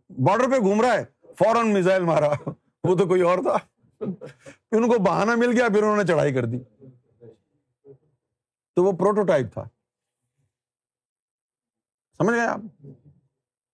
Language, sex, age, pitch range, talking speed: Urdu, male, 50-69, 130-210 Hz, 125 wpm